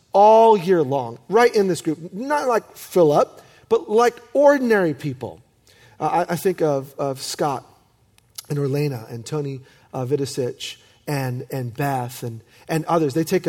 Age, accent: 40-59, American